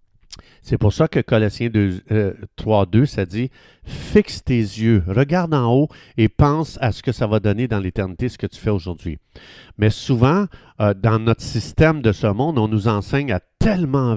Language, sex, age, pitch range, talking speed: French, male, 50-69, 105-145 Hz, 200 wpm